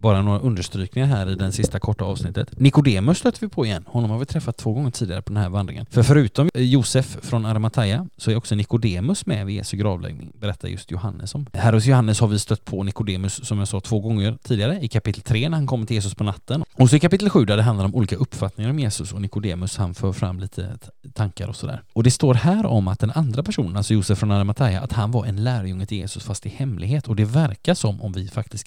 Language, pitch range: Swedish, 100-130 Hz